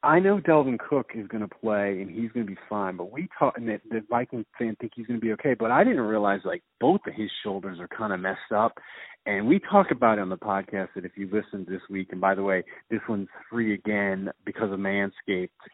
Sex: male